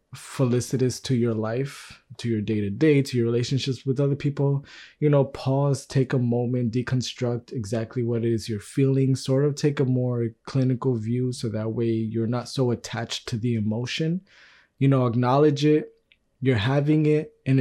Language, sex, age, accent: English, male, 20-39, American